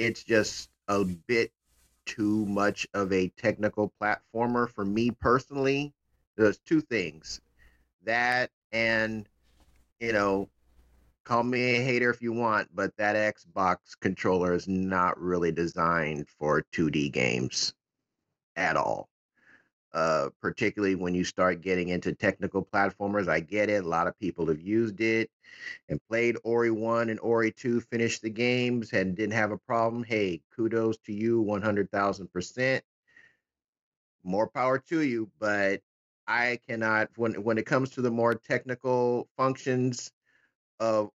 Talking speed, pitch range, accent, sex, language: 140 wpm, 95-120 Hz, American, male, English